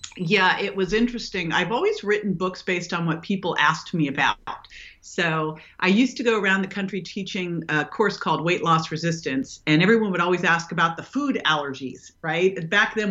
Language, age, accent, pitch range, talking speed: English, 40-59, American, 155-195 Hz, 190 wpm